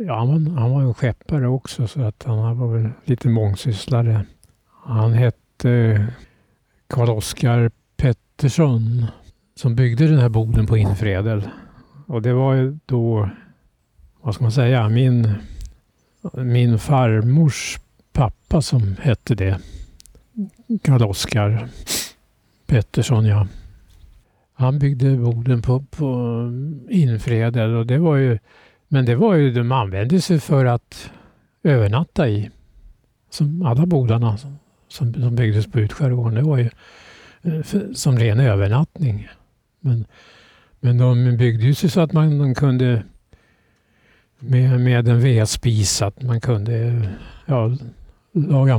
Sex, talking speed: male, 120 wpm